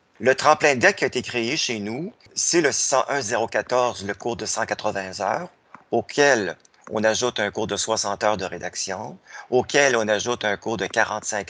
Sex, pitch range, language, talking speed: male, 105-125 Hz, French, 175 wpm